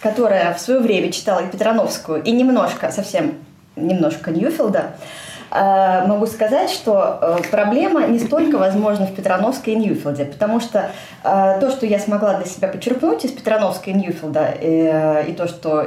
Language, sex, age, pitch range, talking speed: Russian, female, 20-39, 170-235 Hz, 150 wpm